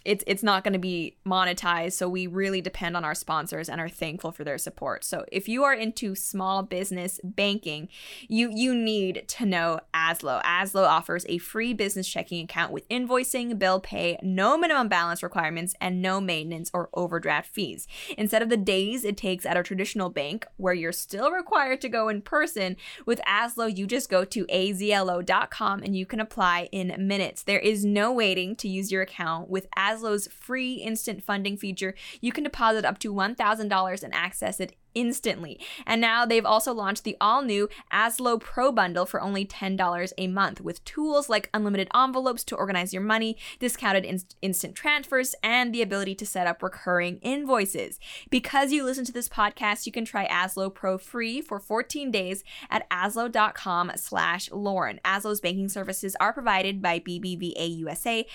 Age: 20-39